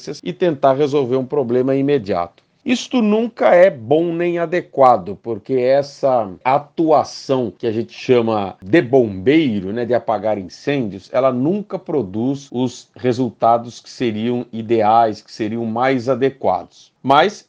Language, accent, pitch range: Portuguese, Brazilian, 120-165 Hz